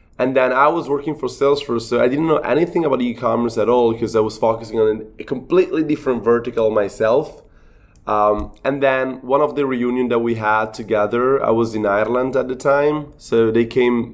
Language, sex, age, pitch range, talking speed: English, male, 20-39, 110-130 Hz, 200 wpm